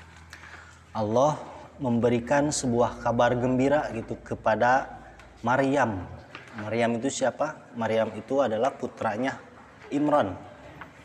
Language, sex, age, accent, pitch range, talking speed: Indonesian, male, 30-49, native, 100-125 Hz, 85 wpm